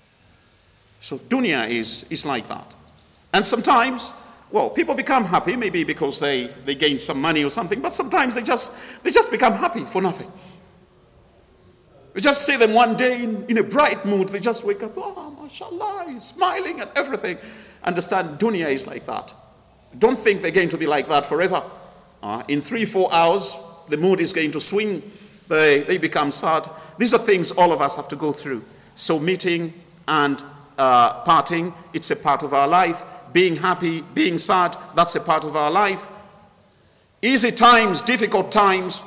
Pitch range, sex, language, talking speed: 140-215 Hz, male, English, 175 wpm